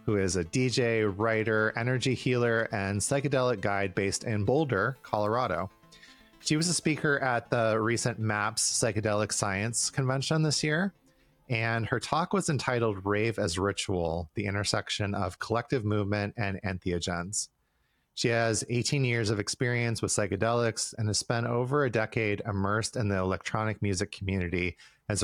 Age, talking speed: 30-49, 150 wpm